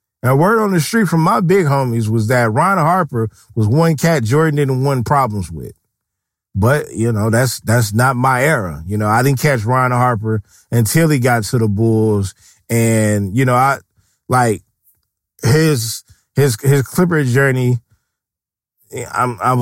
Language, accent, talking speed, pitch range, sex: English, American, 160 wpm, 115-165 Hz, male